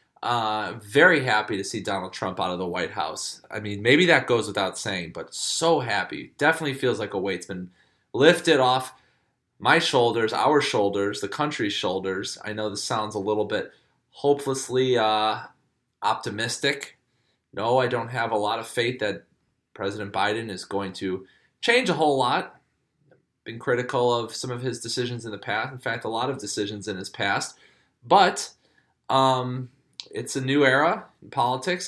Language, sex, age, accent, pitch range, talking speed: English, male, 20-39, American, 110-135 Hz, 175 wpm